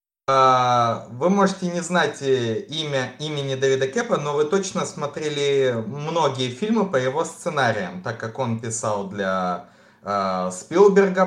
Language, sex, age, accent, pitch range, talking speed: Ukrainian, male, 20-39, native, 115-180 Hz, 130 wpm